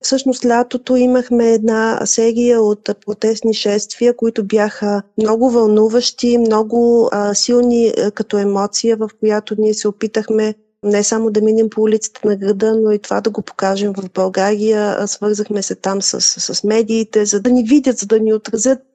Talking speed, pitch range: 170 wpm, 210-230 Hz